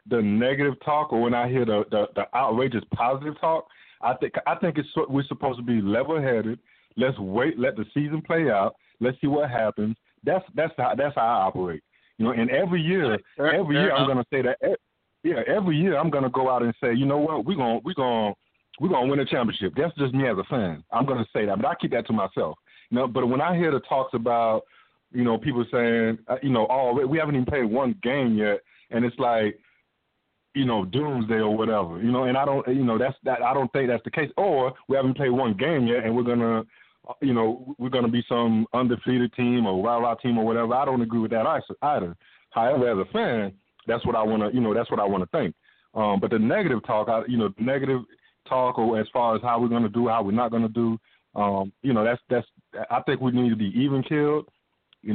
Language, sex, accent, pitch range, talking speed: English, male, American, 115-135 Hz, 245 wpm